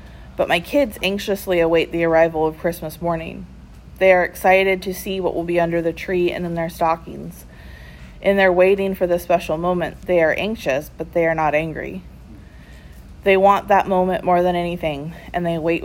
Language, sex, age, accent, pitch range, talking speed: English, female, 30-49, American, 160-185 Hz, 190 wpm